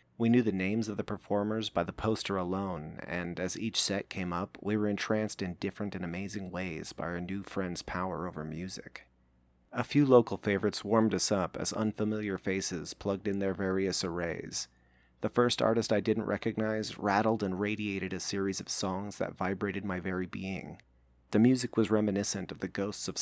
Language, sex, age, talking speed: English, male, 30-49, 190 wpm